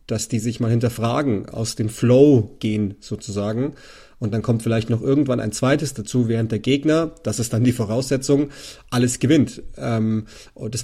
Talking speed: 170 wpm